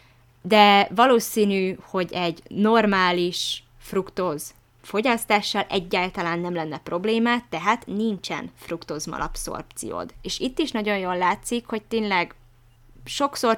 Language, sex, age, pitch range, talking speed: Hungarian, female, 20-39, 170-220 Hz, 100 wpm